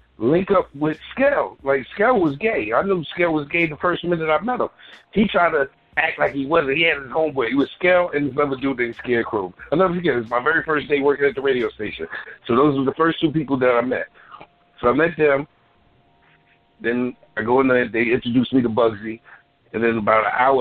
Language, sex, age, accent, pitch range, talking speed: English, male, 60-79, American, 120-155 Hz, 235 wpm